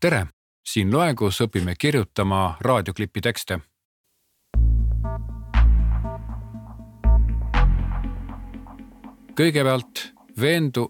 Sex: male